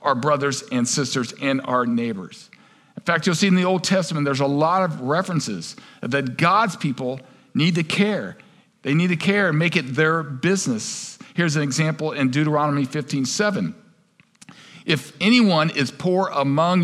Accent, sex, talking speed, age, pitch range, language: American, male, 170 wpm, 50-69, 140-190 Hz, English